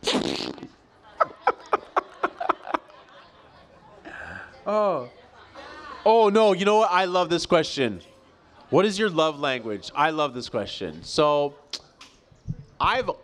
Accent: American